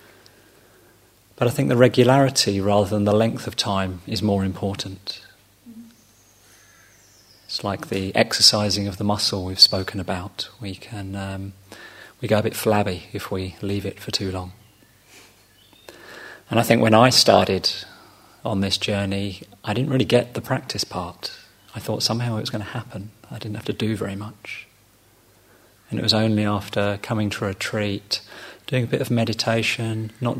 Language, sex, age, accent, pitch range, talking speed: English, male, 30-49, British, 100-115 Hz, 170 wpm